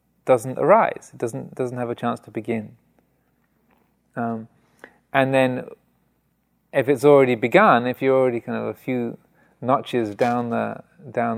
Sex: male